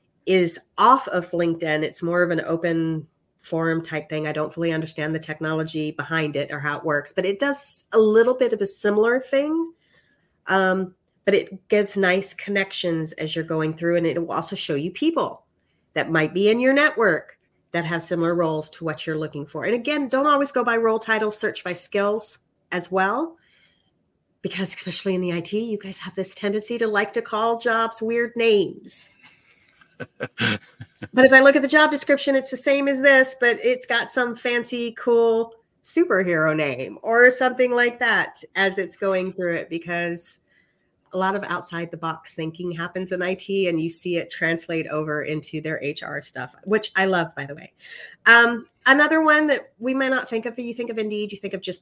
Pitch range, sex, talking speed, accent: 165-235 Hz, female, 195 wpm, American